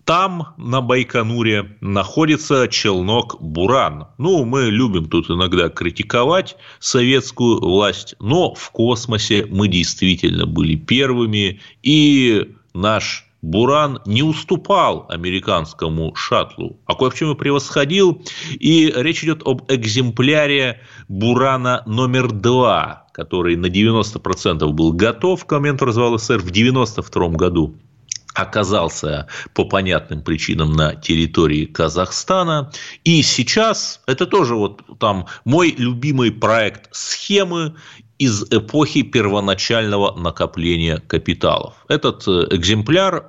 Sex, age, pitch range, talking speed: male, 30-49, 95-140 Hz, 105 wpm